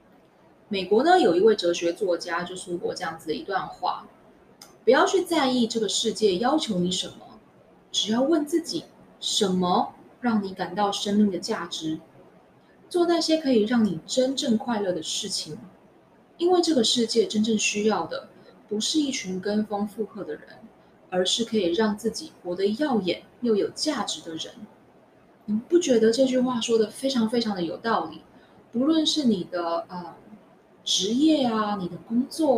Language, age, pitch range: Chinese, 20-39, 190-270 Hz